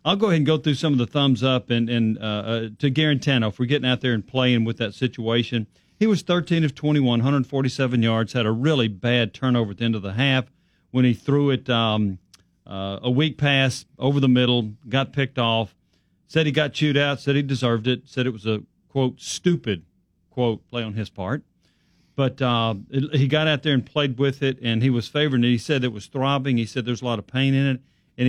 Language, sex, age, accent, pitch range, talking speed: English, male, 40-59, American, 115-140 Hz, 235 wpm